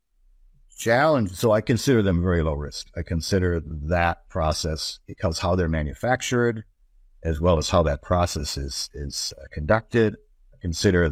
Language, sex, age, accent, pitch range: Chinese, male, 60-79, American, 75-95 Hz